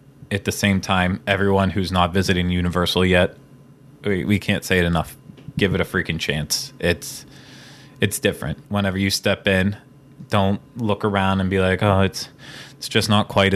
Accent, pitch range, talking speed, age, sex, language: American, 95-120 Hz, 175 wpm, 20-39, male, English